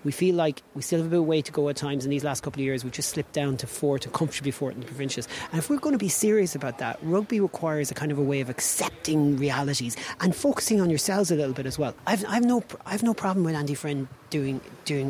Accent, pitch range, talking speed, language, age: Irish, 140-195 Hz, 280 wpm, English, 30-49